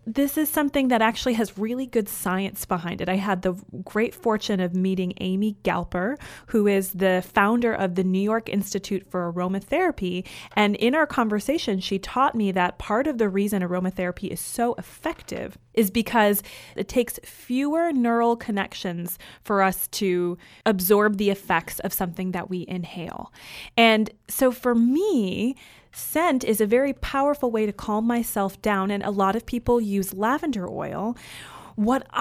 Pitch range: 190-240 Hz